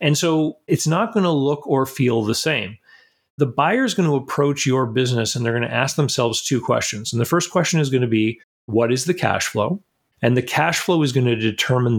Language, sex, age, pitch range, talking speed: English, male, 40-59, 115-150 Hz, 240 wpm